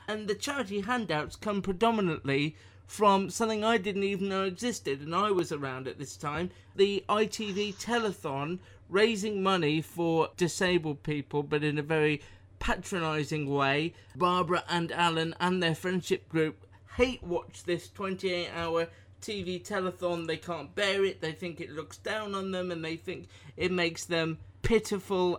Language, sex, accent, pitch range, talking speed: English, male, British, 160-195 Hz, 155 wpm